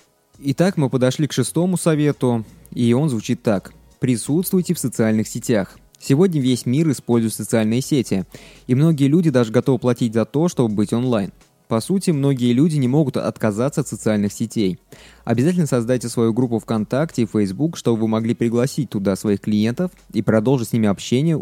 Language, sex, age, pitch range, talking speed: Russian, male, 20-39, 110-140 Hz, 170 wpm